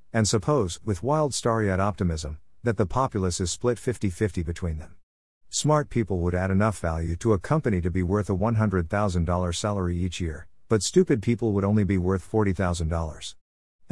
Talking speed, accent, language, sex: 175 wpm, American, English, male